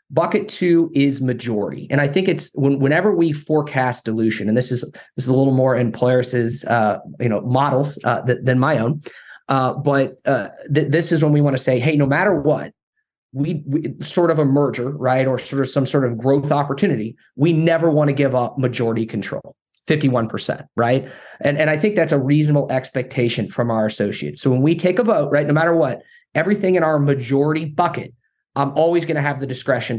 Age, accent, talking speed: 20-39, American, 210 wpm